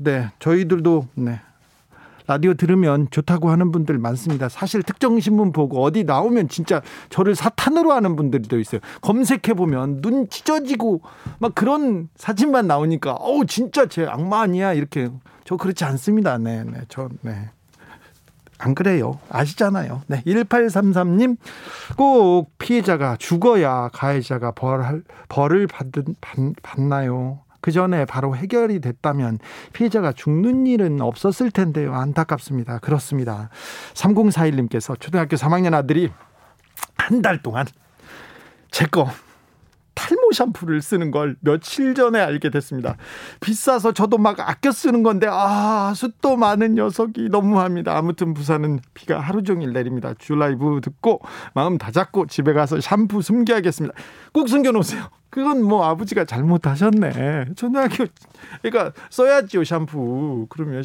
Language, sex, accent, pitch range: Korean, male, native, 140-215 Hz